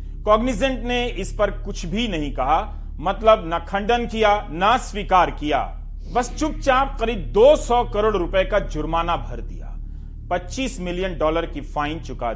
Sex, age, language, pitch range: male, 40-59, Hindi, 155-200 Hz